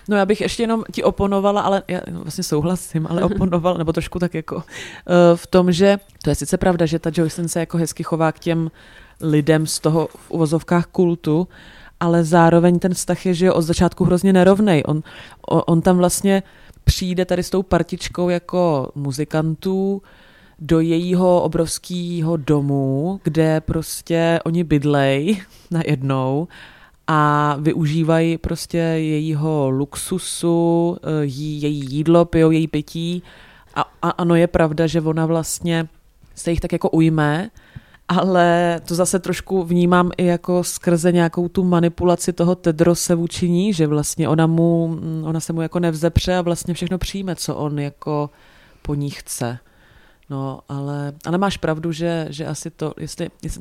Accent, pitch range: native, 155-180 Hz